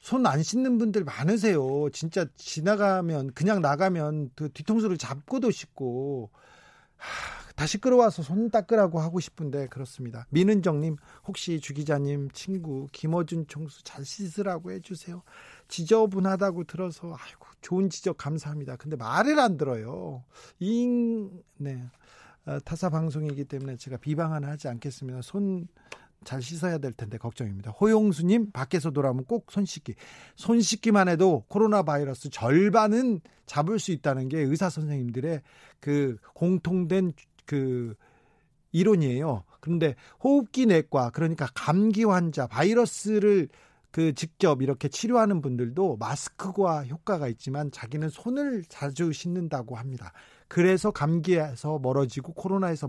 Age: 40-59